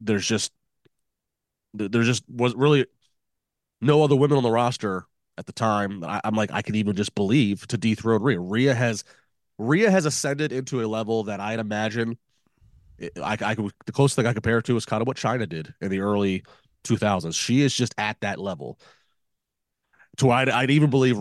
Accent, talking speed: American, 190 wpm